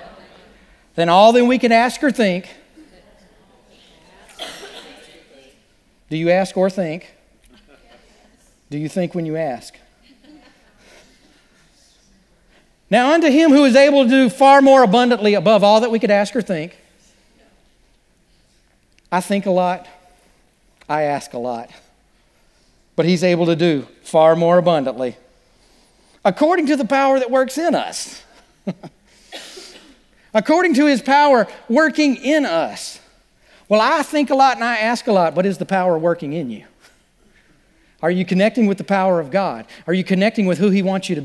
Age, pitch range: 40-59, 185-260 Hz